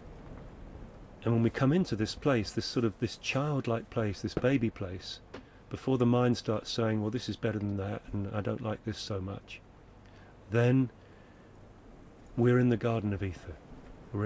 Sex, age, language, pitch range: male, 40-59, English, 100-125 Hz